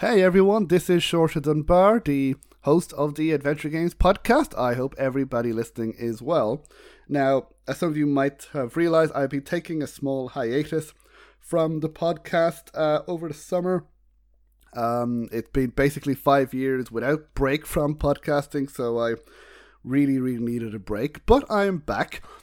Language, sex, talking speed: English, male, 165 wpm